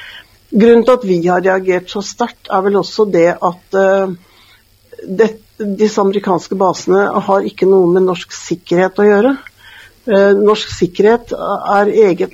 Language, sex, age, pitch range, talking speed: Danish, female, 60-79, 175-210 Hz, 145 wpm